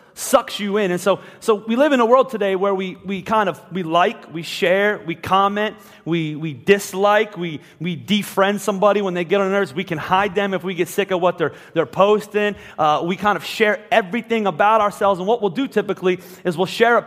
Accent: American